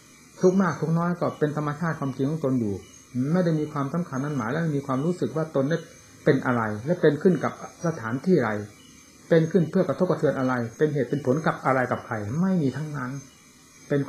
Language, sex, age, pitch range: Thai, male, 60-79, 125-165 Hz